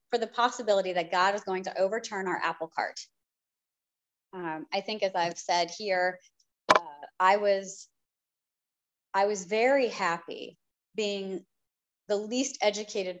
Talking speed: 135 wpm